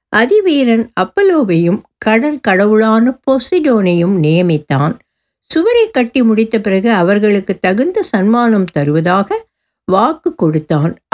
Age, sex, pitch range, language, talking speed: 60-79, female, 180-265 Hz, Tamil, 85 wpm